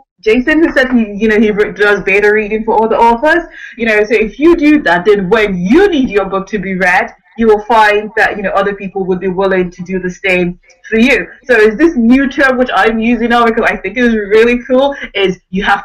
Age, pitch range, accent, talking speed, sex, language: 20-39, 190-245 Hz, British, 245 wpm, female, English